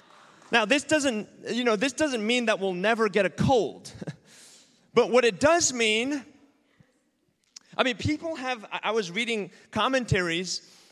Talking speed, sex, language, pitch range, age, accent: 150 wpm, male, English, 190-250 Hz, 30-49, American